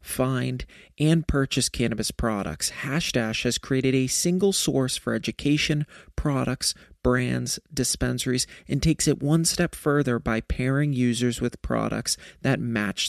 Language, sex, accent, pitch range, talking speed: English, male, American, 120-150 Hz, 135 wpm